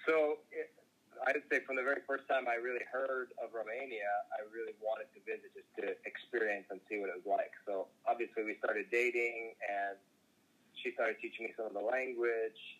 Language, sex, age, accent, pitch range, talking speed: Romanian, male, 30-49, American, 110-145 Hz, 200 wpm